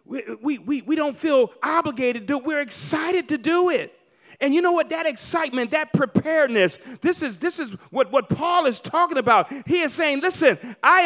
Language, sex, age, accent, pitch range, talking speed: English, male, 40-59, American, 205-330 Hz, 195 wpm